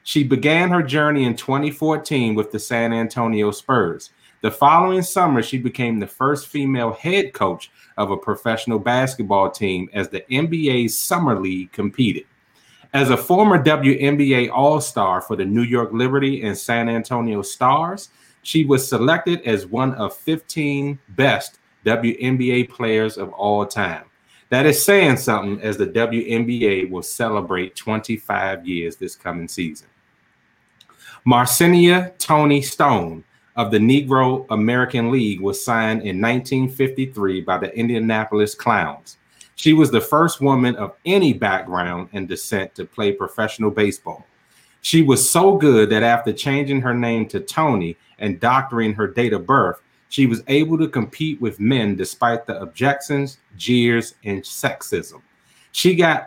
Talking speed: 145 wpm